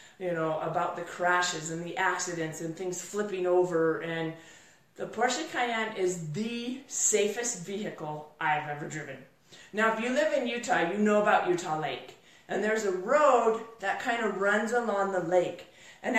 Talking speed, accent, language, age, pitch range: 170 wpm, American, English, 30-49, 185-255 Hz